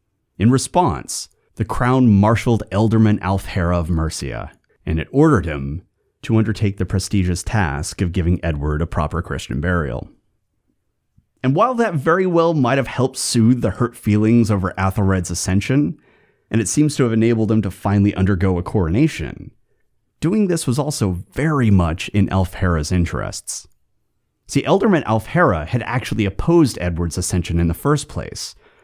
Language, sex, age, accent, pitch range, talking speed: English, male, 30-49, American, 90-125 Hz, 150 wpm